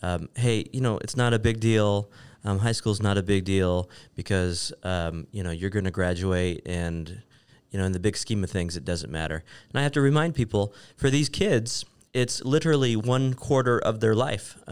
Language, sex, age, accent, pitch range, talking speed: English, male, 30-49, American, 95-120 Hz, 215 wpm